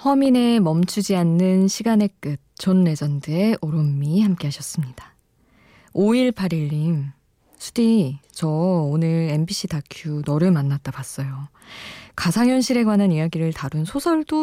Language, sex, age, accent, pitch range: Korean, female, 20-39, native, 155-195 Hz